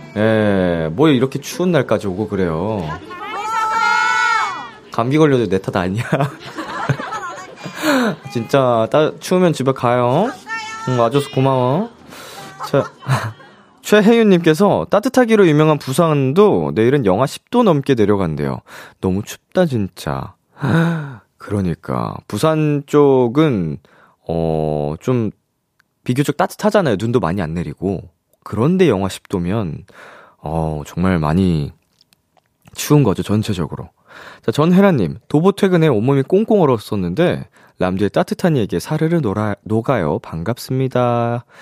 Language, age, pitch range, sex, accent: Korean, 20-39, 95-165 Hz, male, native